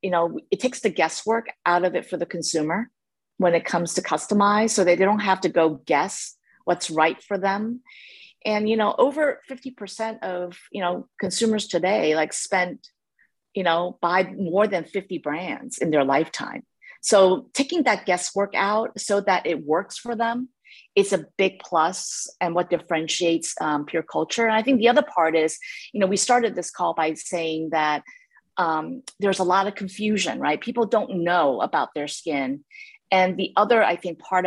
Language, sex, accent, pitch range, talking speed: English, female, American, 165-220 Hz, 190 wpm